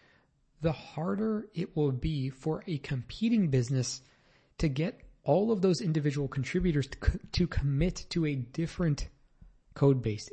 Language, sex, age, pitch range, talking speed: English, male, 20-39, 125-160 Hz, 140 wpm